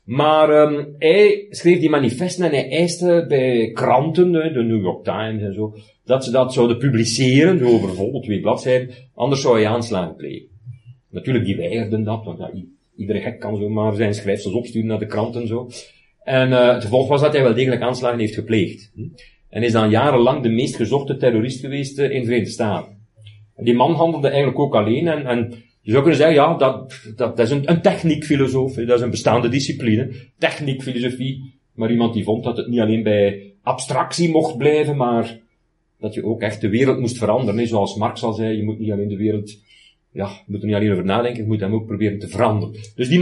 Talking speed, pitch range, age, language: 210 wpm, 110-140 Hz, 40-59, Dutch